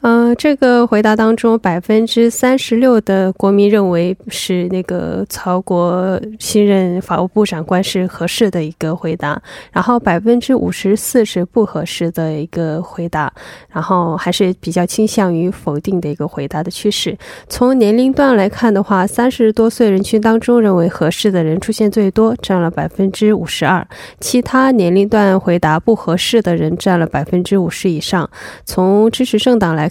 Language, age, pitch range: Korean, 20-39, 175-220 Hz